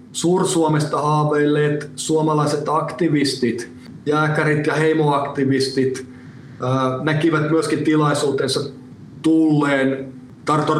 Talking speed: 65 wpm